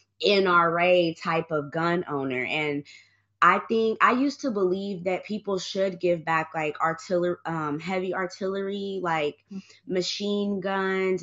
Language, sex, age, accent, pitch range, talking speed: English, female, 20-39, American, 175-210 Hz, 135 wpm